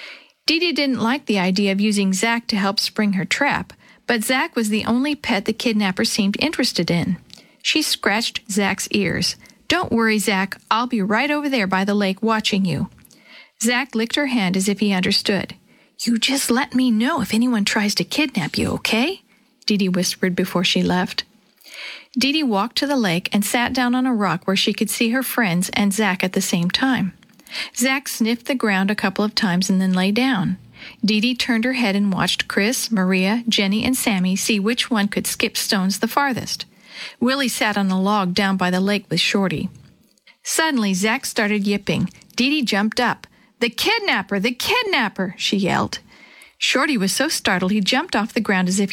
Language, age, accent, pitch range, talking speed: English, 50-69, American, 195-245 Hz, 195 wpm